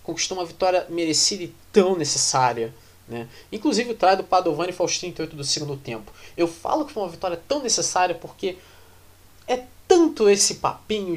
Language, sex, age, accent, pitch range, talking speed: Portuguese, male, 20-39, Brazilian, 135-205 Hz, 170 wpm